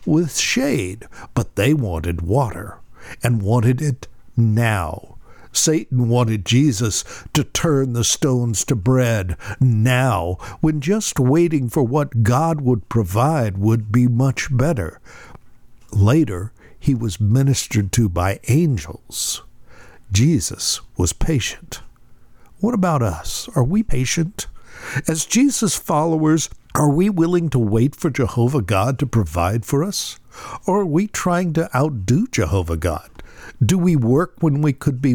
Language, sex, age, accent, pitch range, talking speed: English, male, 60-79, American, 110-155 Hz, 135 wpm